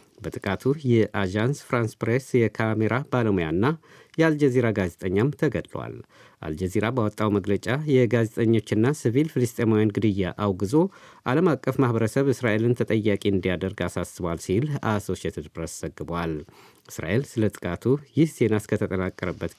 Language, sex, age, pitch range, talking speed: Amharic, male, 50-69, 105-130 Hz, 100 wpm